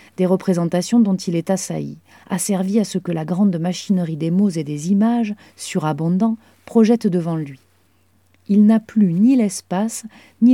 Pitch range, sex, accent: 165-205 Hz, female, French